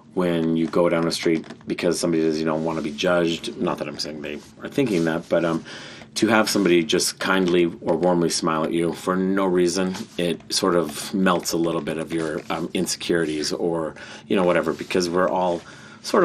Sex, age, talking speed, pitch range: male, 30-49, 215 wpm, 80-90 Hz